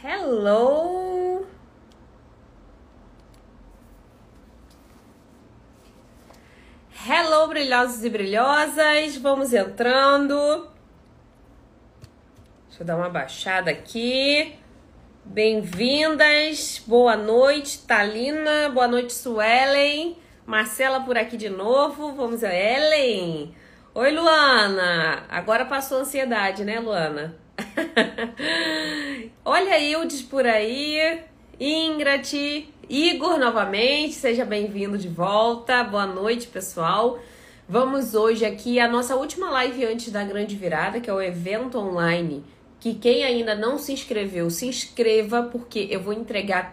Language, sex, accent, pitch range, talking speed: Portuguese, female, Brazilian, 210-285 Hz, 100 wpm